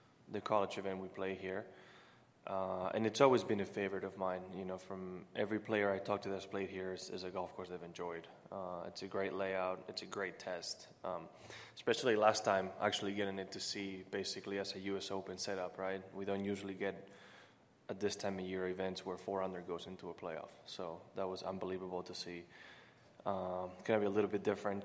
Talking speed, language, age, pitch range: 215 wpm, English, 20-39, 95-105 Hz